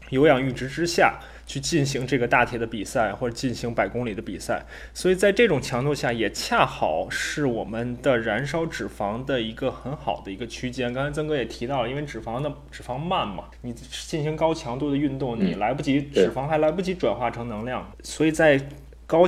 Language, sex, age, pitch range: Chinese, male, 20-39, 115-155 Hz